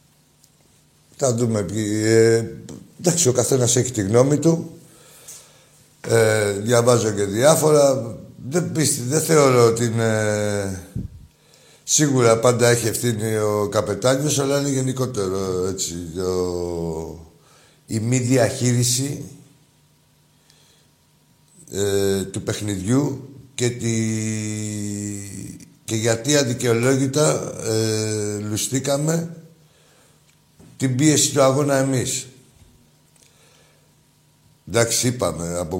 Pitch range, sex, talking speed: 110-145 Hz, male, 90 wpm